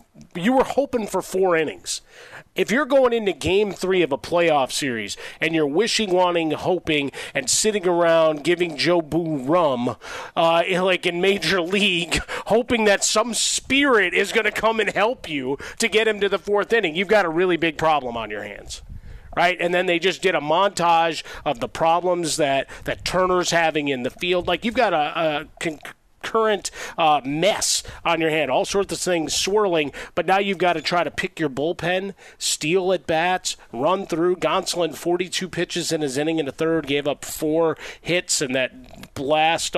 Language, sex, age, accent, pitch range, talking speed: English, male, 40-59, American, 150-185 Hz, 190 wpm